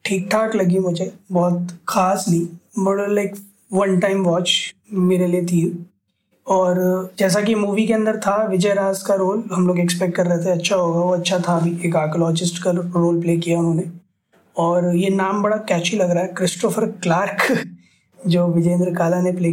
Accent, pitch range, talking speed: native, 170-195 Hz, 185 wpm